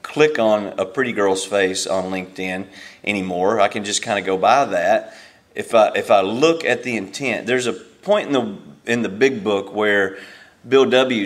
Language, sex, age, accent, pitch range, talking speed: English, male, 30-49, American, 95-130 Hz, 195 wpm